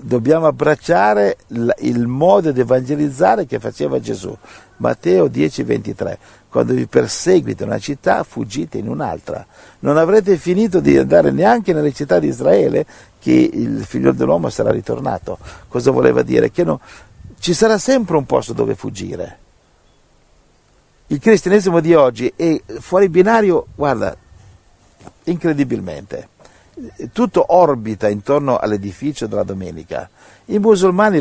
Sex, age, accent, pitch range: male, 50-69, native, 120-175 Hz